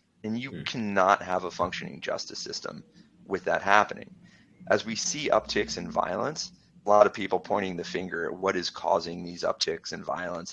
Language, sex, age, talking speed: English, male, 30-49, 180 wpm